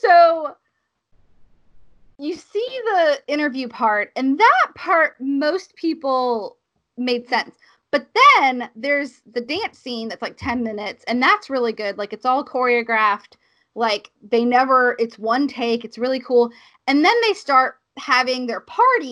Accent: American